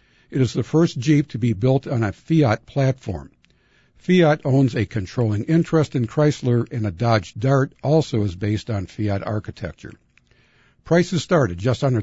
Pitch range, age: 110-145 Hz, 60-79